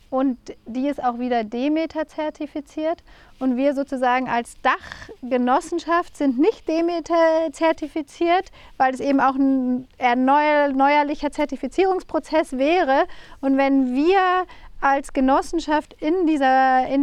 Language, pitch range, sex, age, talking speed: German, 265-320 Hz, female, 30-49, 115 wpm